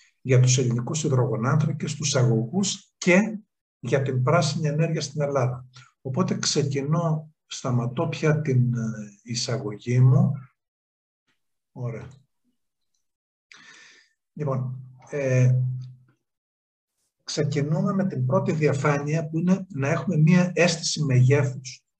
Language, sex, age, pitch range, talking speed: Greek, male, 50-69, 125-160 Hz, 95 wpm